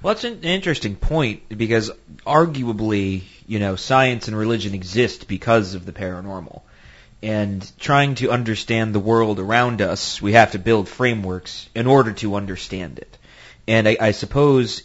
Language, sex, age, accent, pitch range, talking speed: English, male, 30-49, American, 100-120 Hz, 160 wpm